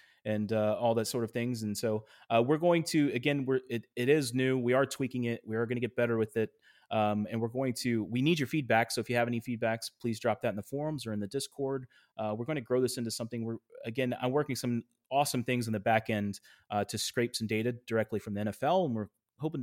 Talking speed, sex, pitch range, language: 265 wpm, male, 110-125 Hz, English